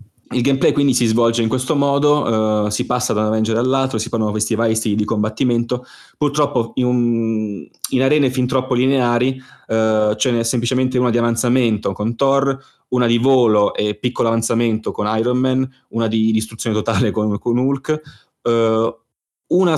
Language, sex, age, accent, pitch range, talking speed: Italian, male, 20-39, native, 105-125 Hz, 175 wpm